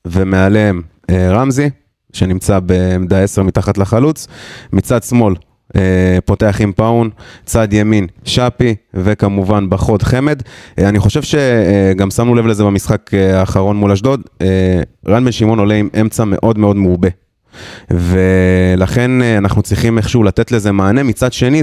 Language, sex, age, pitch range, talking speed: Hebrew, male, 20-39, 95-120 Hz, 130 wpm